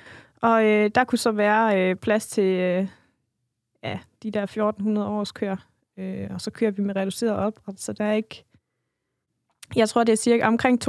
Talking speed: 185 wpm